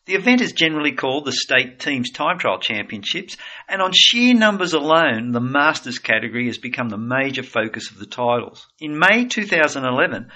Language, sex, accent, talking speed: English, male, Australian, 175 wpm